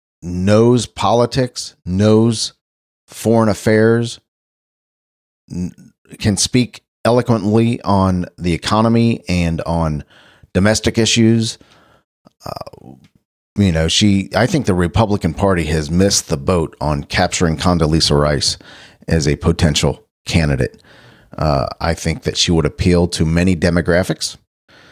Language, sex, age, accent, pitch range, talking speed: English, male, 40-59, American, 80-110 Hz, 110 wpm